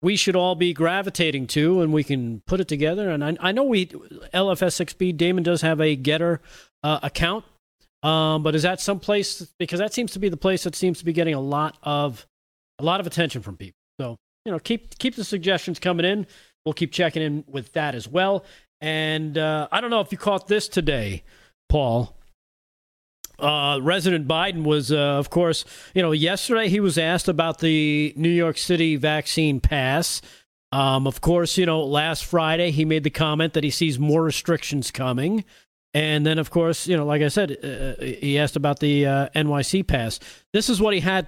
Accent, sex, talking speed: American, male, 200 wpm